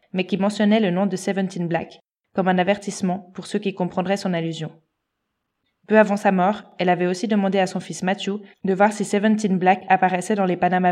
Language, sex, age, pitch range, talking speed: French, female, 20-39, 180-205 Hz, 210 wpm